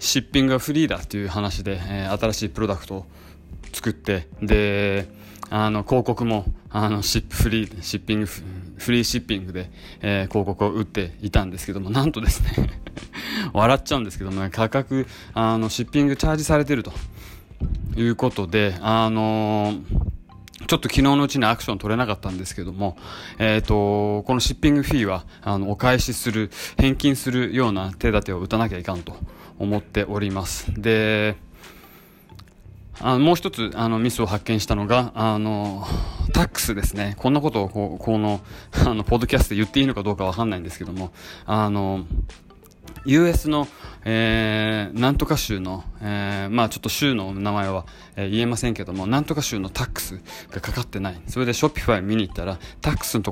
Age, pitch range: 20-39, 95-115 Hz